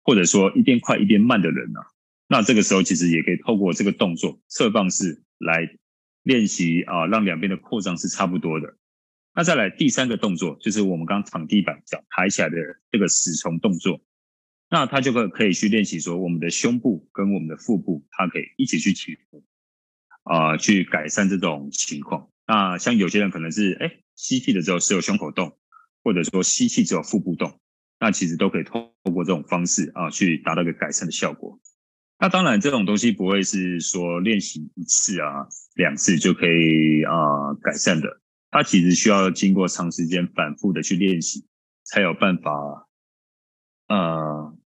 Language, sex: Chinese, male